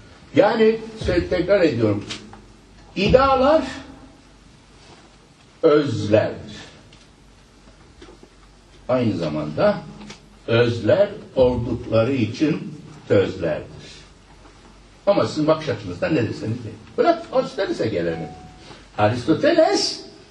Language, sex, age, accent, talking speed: Turkish, male, 60-79, native, 55 wpm